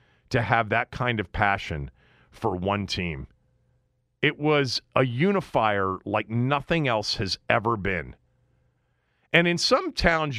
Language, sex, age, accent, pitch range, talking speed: English, male, 40-59, American, 95-140 Hz, 135 wpm